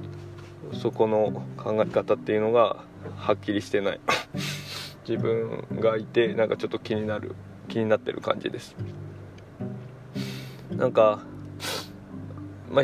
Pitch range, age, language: 100-130 Hz, 20-39, Japanese